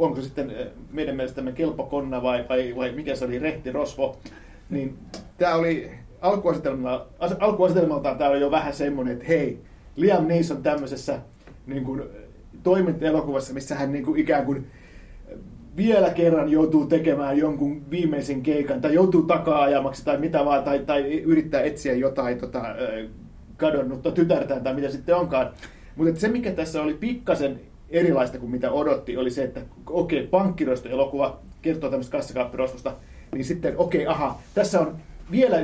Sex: male